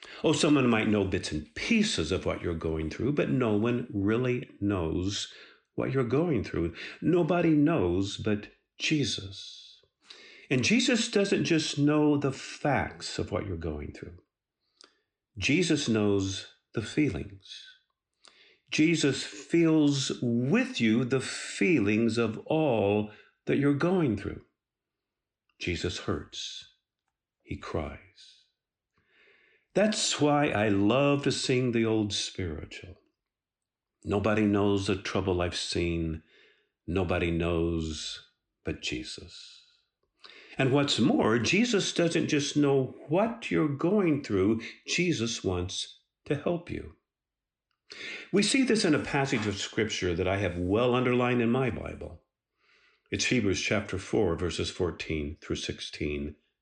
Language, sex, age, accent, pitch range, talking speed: English, male, 50-69, American, 100-150 Hz, 125 wpm